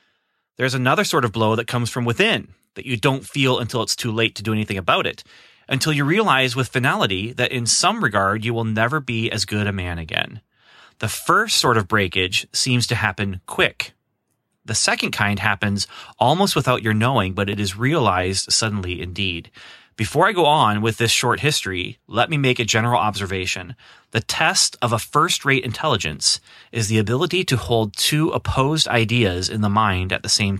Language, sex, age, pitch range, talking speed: English, male, 30-49, 105-130 Hz, 190 wpm